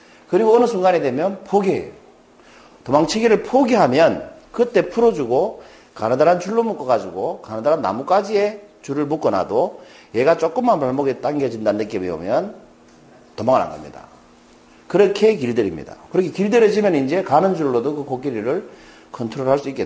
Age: 40-59